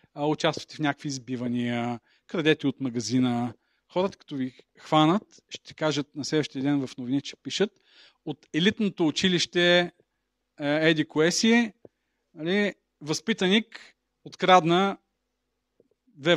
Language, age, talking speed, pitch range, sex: Bulgarian, 40-59, 105 wpm, 135-180 Hz, male